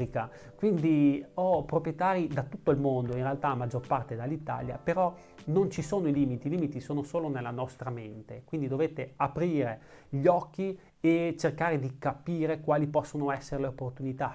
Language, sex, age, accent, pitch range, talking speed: Italian, male, 30-49, native, 135-160 Hz, 165 wpm